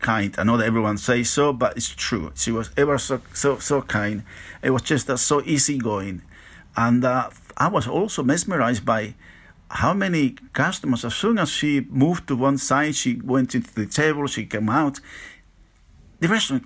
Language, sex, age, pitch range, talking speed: English, male, 50-69, 105-145 Hz, 185 wpm